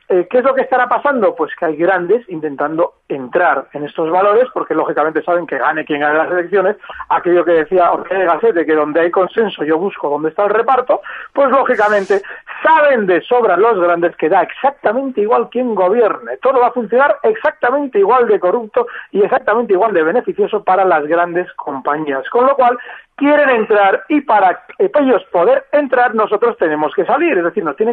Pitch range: 175-260 Hz